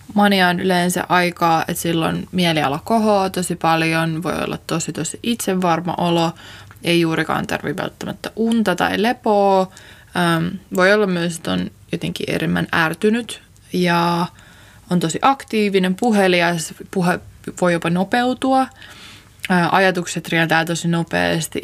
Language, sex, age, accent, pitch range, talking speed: Finnish, female, 20-39, native, 160-185 Hz, 120 wpm